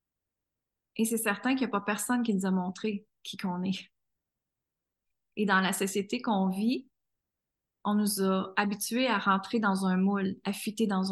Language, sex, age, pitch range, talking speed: French, female, 20-39, 195-225 Hz, 175 wpm